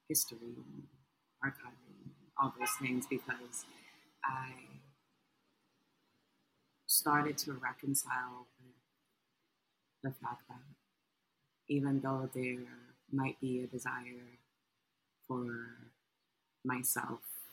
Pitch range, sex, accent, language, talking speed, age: 125-135 Hz, female, American, English, 75 wpm, 30-49